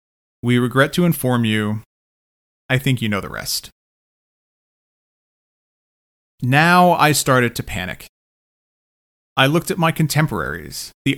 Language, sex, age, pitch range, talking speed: English, male, 30-49, 110-150 Hz, 120 wpm